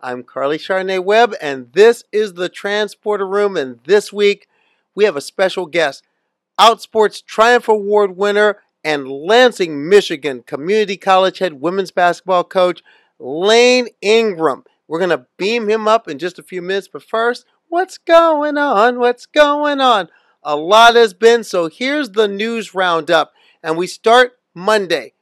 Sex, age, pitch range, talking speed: male, 40-59, 175-215 Hz, 150 wpm